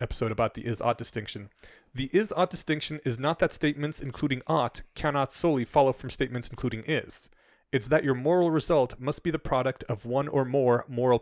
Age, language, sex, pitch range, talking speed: 30-49, English, male, 115-145 Hz, 185 wpm